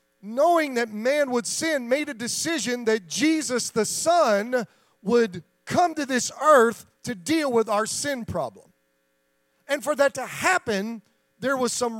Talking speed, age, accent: 155 wpm, 40-59, American